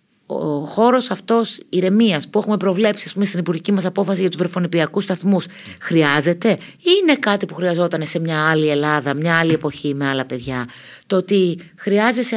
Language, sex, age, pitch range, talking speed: Greek, female, 30-49, 155-215 Hz, 170 wpm